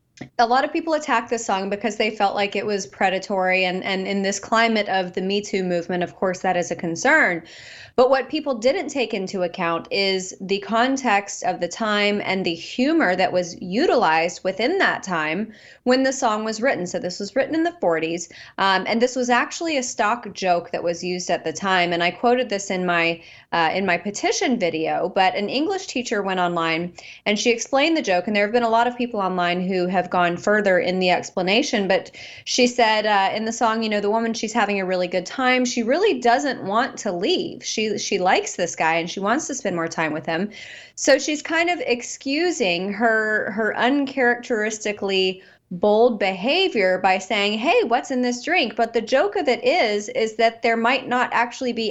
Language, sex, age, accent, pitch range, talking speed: English, female, 30-49, American, 185-245 Hz, 210 wpm